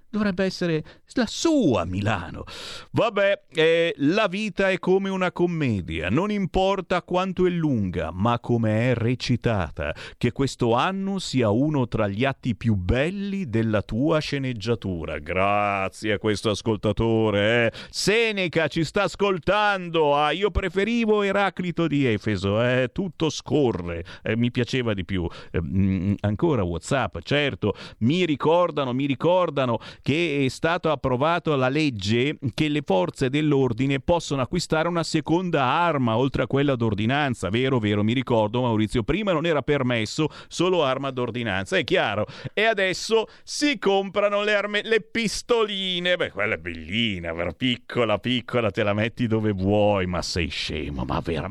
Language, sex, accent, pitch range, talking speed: Italian, male, native, 115-180 Hz, 145 wpm